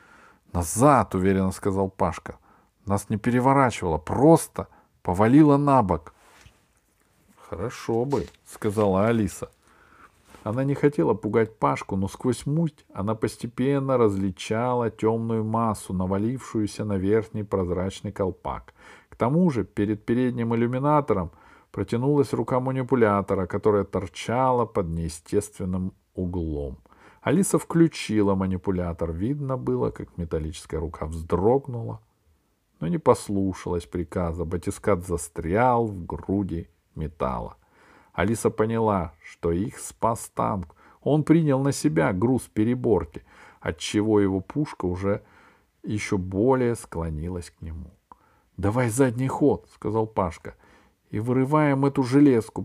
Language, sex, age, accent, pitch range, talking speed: Russian, male, 50-69, native, 95-130 Hz, 110 wpm